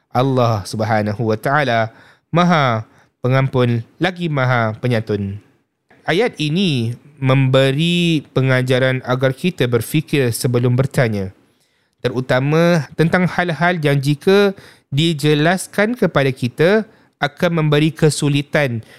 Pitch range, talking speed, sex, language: 125-155 Hz, 90 wpm, male, Malay